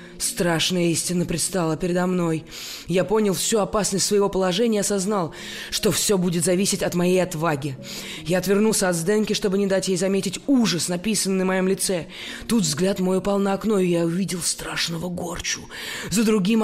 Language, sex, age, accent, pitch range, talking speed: Russian, female, 20-39, native, 185-230 Hz, 165 wpm